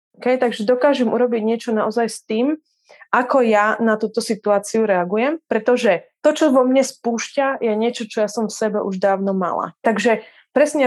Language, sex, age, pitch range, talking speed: Czech, female, 20-39, 205-250 Hz, 175 wpm